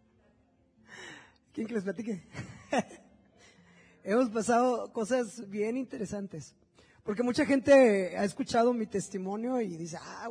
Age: 20-39